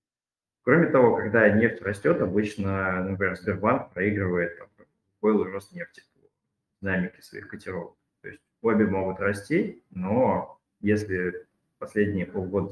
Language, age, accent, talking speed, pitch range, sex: Russian, 20-39, native, 125 wpm, 95-105 Hz, male